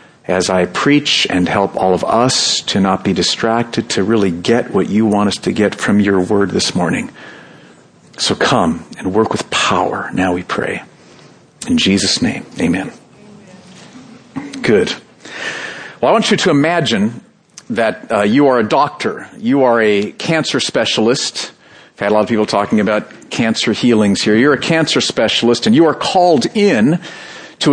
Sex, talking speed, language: male, 170 wpm, English